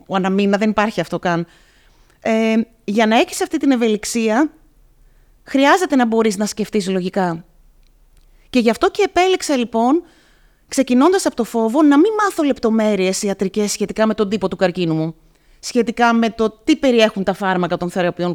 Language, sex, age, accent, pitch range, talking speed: Greek, female, 30-49, native, 195-250 Hz, 165 wpm